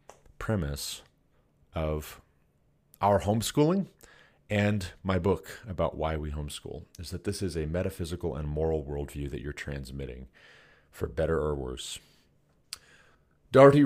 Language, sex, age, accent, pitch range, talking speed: English, male, 40-59, American, 75-105 Hz, 120 wpm